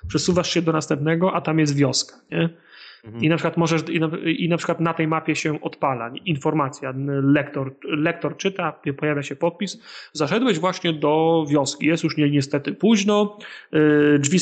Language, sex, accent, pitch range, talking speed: Polish, male, native, 145-170 Hz, 160 wpm